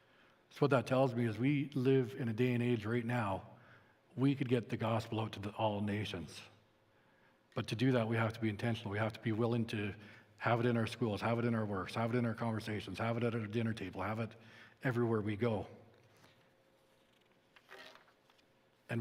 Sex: male